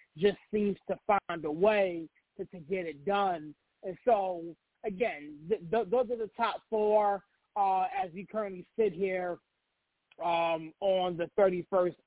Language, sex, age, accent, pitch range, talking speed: English, male, 30-49, American, 185-215 Hz, 155 wpm